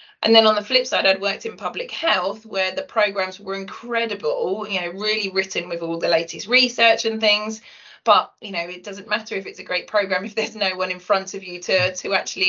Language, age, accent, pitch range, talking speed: English, 20-39, British, 175-215 Hz, 235 wpm